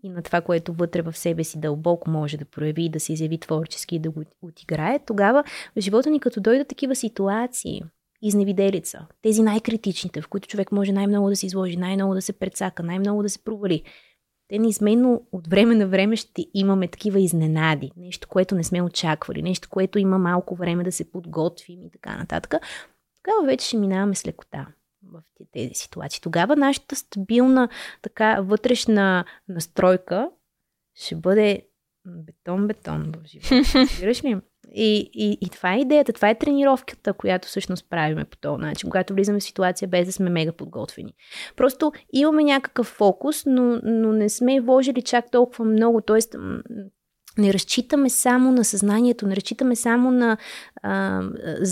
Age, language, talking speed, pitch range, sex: 20-39, Bulgarian, 160 wpm, 180-235 Hz, female